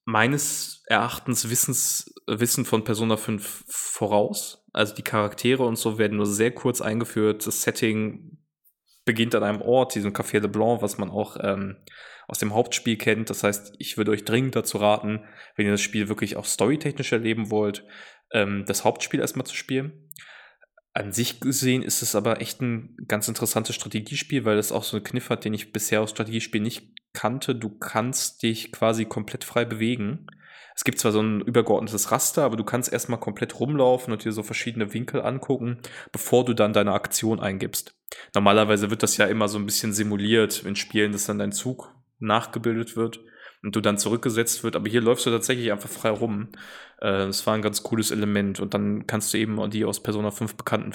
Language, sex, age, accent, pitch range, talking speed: German, male, 20-39, German, 105-120 Hz, 190 wpm